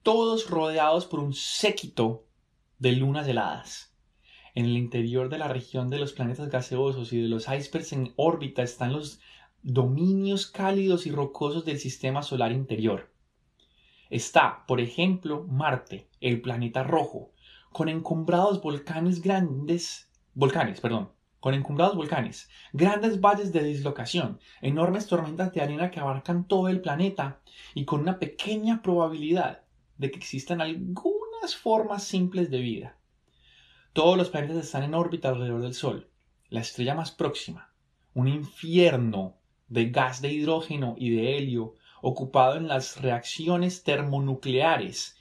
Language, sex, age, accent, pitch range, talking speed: Spanish, male, 20-39, Colombian, 125-170 Hz, 135 wpm